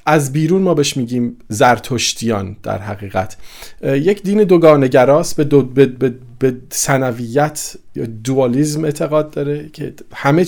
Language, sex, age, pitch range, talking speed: Persian, male, 50-69, 120-155 Hz, 140 wpm